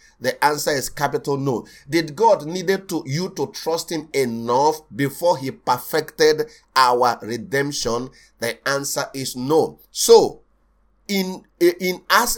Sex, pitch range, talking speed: male, 120-160 Hz, 130 wpm